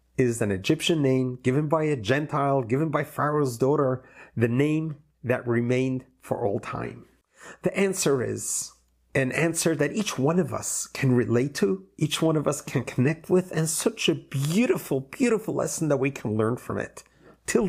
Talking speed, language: 175 wpm, English